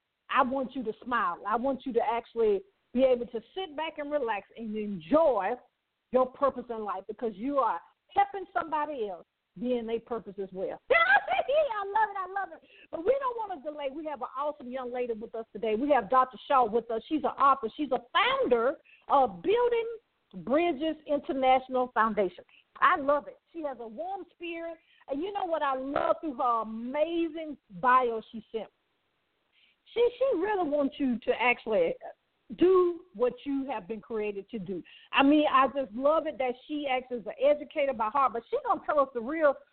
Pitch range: 240-335 Hz